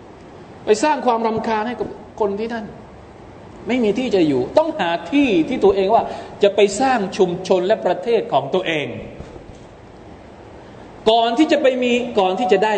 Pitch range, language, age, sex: 150-220 Hz, Thai, 20-39, male